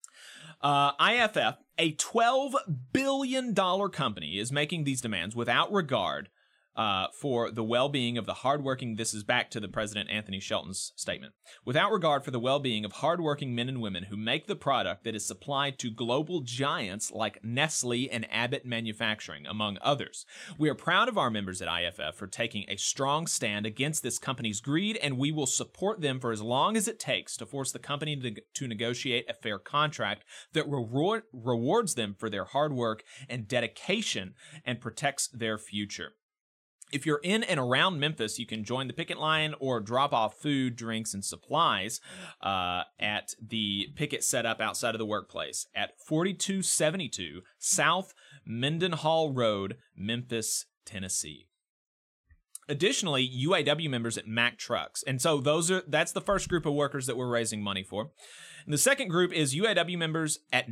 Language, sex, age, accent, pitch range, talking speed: English, male, 30-49, American, 110-155 Hz, 170 wpm